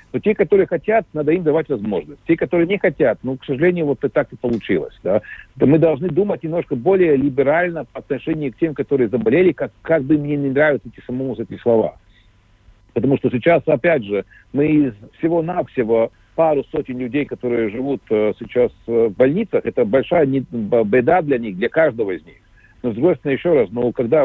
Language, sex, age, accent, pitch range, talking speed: Russian, male, 60-79, native, 125-165 Hz, 185 wpm